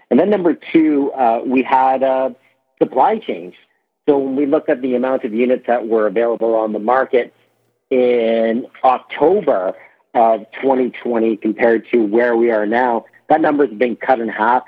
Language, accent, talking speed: English, American, 175 wpm